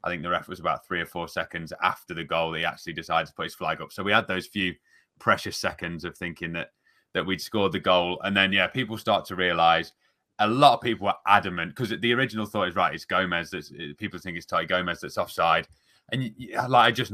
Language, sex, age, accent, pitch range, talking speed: English, male, 30-49, British, 90-105 Hz, 250 wpm